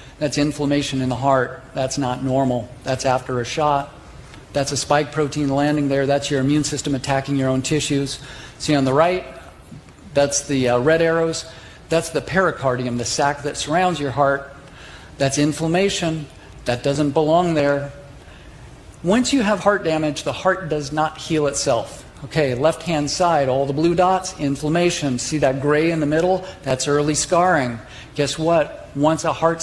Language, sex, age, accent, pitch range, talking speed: English, male, 50-69, American, 135-160 Hz, 170 wpm